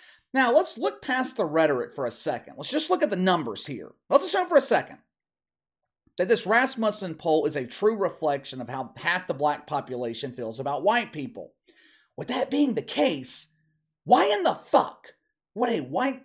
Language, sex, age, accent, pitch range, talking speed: English, male, 30-49, American, 140-230 Hz, 190 wpm